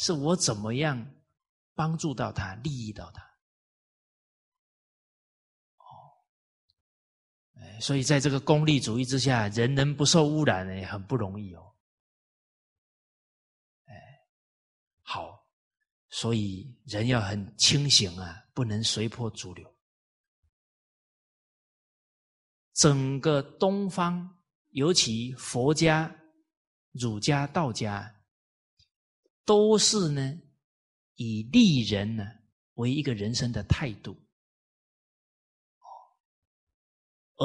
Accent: native